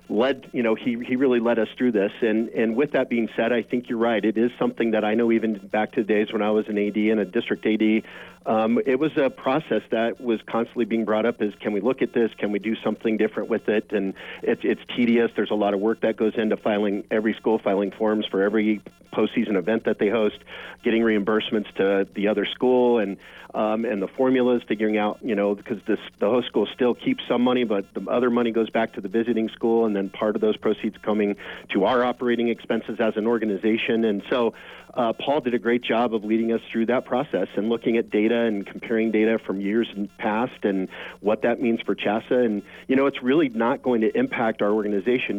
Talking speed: 235 wpm